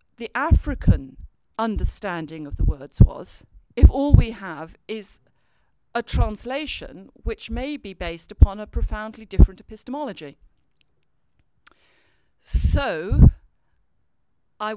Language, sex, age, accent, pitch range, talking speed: English, female, 50-69, British, 185-245 Hz, 100 wpm